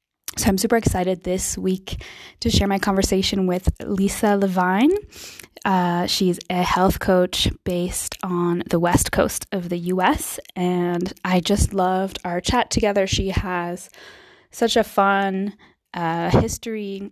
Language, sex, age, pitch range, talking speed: English, female, 20-39, 175-200 Hz, 140 wpm